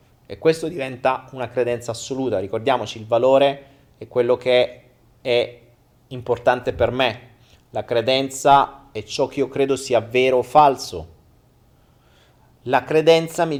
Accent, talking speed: native, 130 wpm